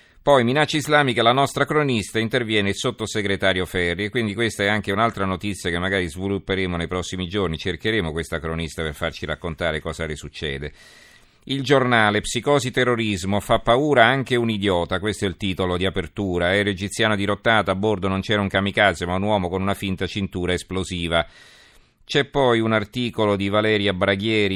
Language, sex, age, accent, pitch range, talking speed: Italian, male, 40-59, native, 80-105 Hz, 170 wpm